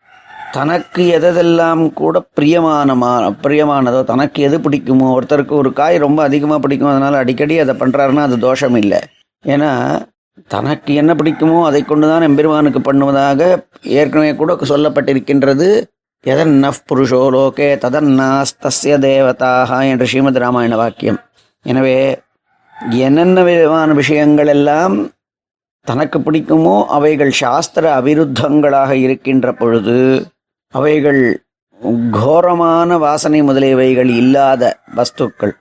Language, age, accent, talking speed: Tamil, 30-49, native, 100 wpm